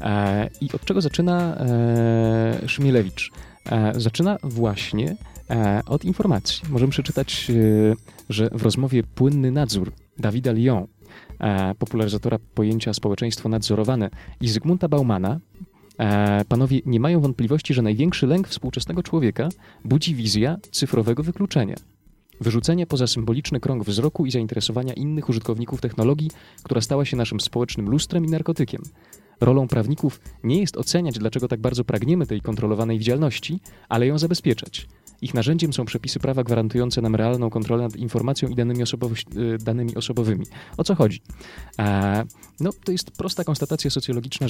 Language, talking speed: Polish, 125 wpm